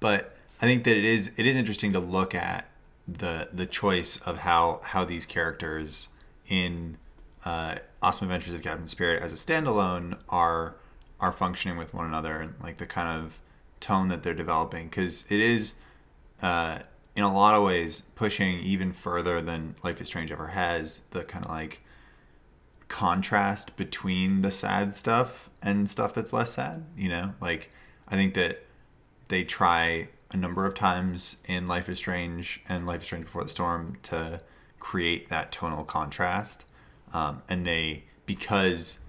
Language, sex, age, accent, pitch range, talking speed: English, male, 20-39, American, 80-95 Hz, 165 wpm